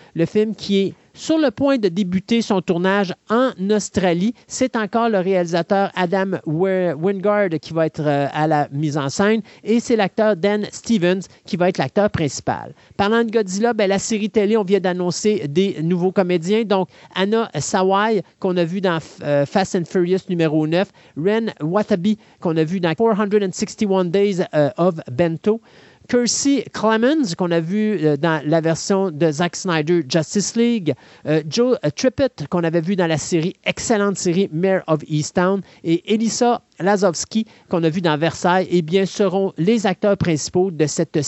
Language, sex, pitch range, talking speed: French, male, 170-220 Hz, 180 wpm